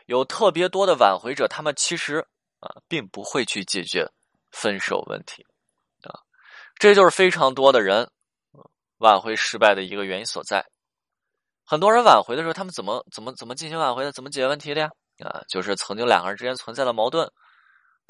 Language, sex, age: Chinese, male, 20-39